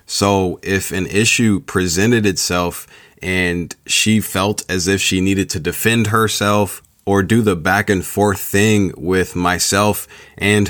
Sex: male